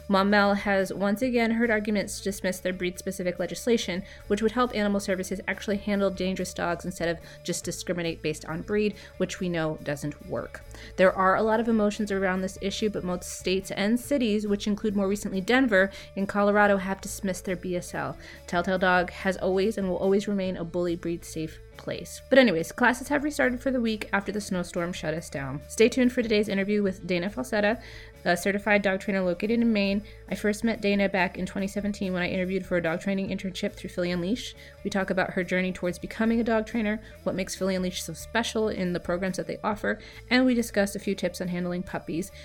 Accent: American